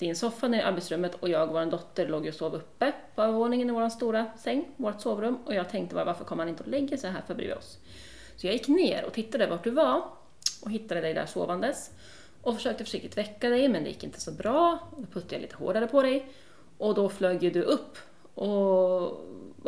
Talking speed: 225 wpm